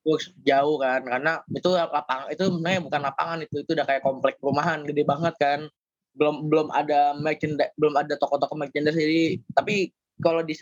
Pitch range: 135-160 Hz